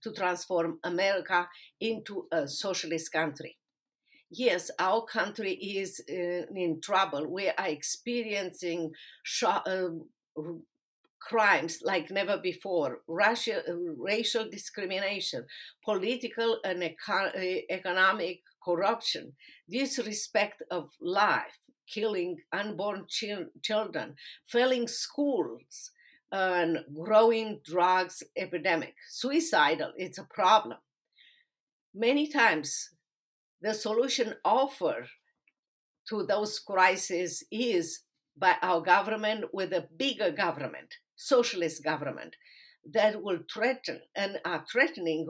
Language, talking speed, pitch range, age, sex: English, 95 wpm, 180-240 Hz, 50-69, female